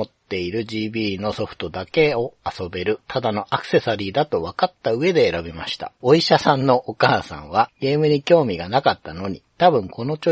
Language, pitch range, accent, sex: Japanese, 105-150 Hz, native, male